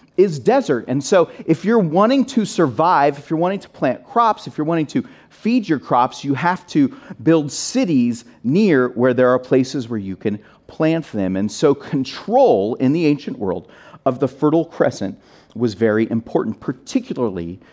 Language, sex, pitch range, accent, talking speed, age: English, male, 115-165 Hz, American, 175 wpm, 40-59